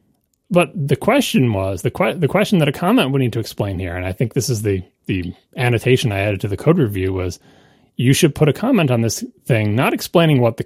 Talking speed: 240 wpm